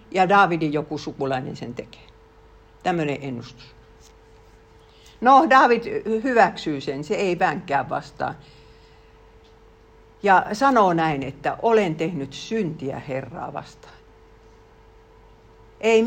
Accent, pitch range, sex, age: native, 145-210 Hz, female, 60-79